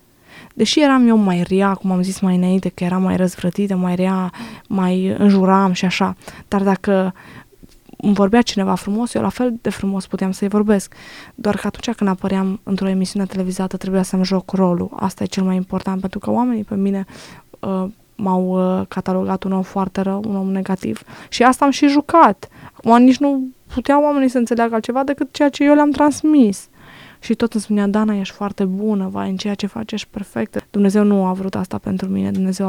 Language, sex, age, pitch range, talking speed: Romanian, female, 20-39, 190-220 Hz, 195 wpm